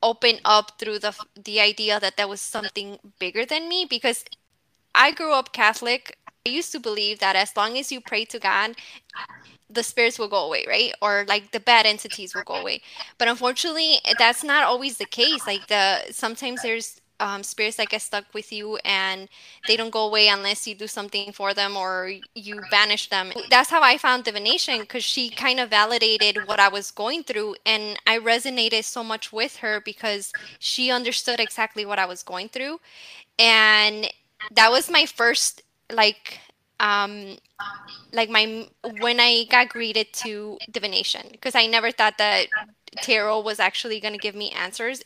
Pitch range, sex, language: 210-245 Hz, female, English